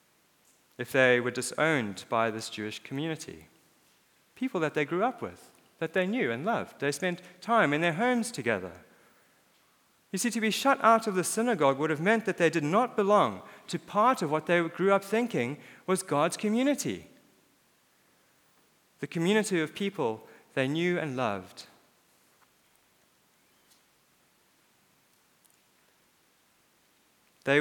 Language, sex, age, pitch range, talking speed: English, male, 40-59, 135-180 Hz, 135 wpm